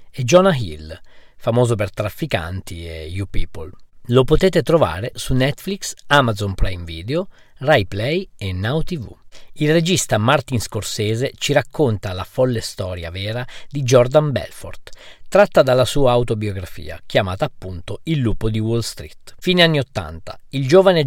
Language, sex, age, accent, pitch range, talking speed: Italian, male, 50-69, native, 105-155 Hz, 145 wpm